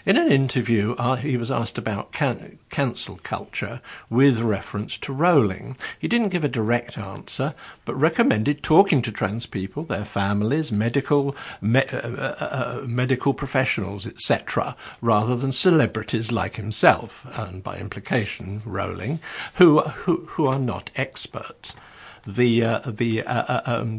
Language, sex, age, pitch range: English, male, 60-79, 110-140 Hz